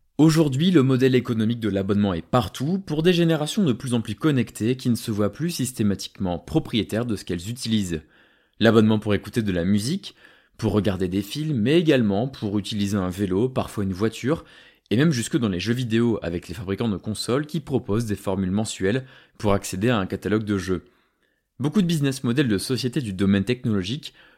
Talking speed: 195 wpm